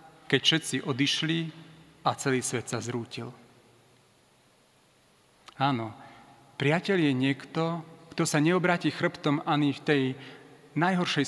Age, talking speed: 40-59, 105 wpm